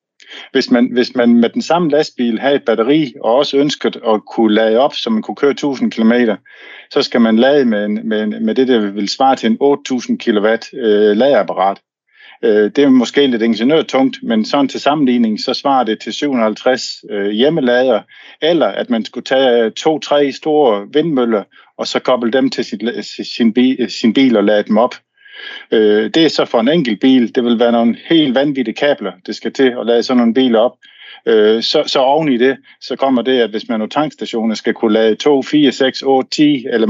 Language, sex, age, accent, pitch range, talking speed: Danish, male, 50-69, native, 110-135 Hz, 210 wpm